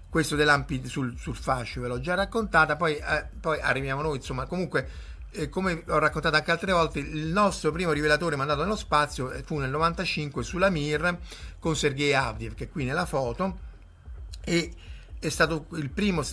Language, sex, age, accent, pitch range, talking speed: Italian, male, 50-69, native, 120-155 Hz, 180 wpm